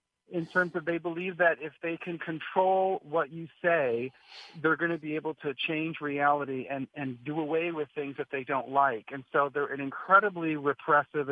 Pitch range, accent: 140-170 Hz, American